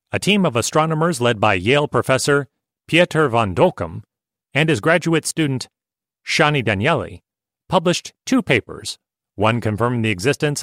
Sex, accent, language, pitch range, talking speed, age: male, American, English, 120-160 Hz, 135 wpm, 40-59